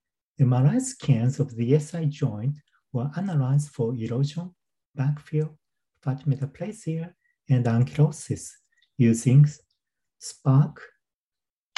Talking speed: 90 wpm